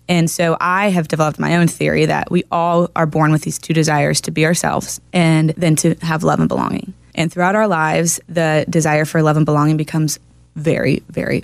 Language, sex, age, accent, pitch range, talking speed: English, female, 20-39, American, 155-175 Hz, 210 wpm